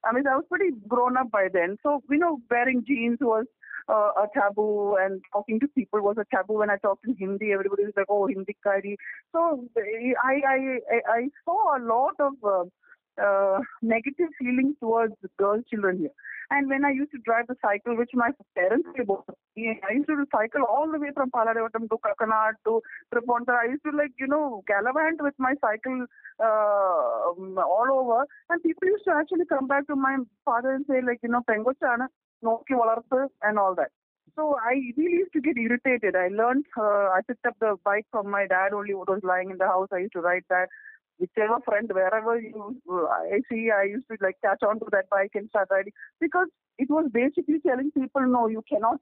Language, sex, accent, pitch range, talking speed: Malayalam, female, native, 205-275 Hz, 210 wpm